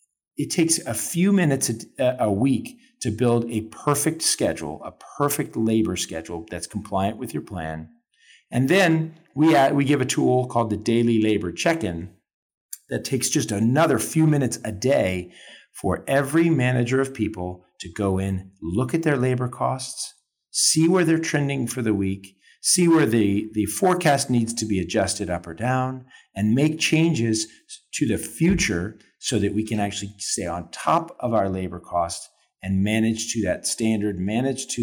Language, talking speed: English, 170 wpm